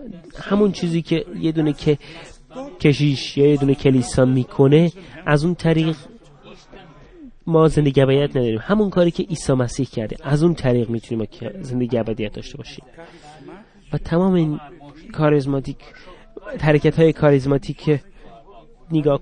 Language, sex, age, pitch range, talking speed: Finnish, male, 30-49, 135-170 Hz, 125 wpm